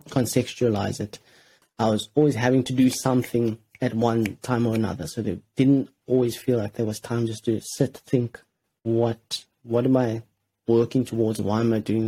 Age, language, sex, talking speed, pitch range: 30-49, English, male, 185 wpm, 110-125 Hz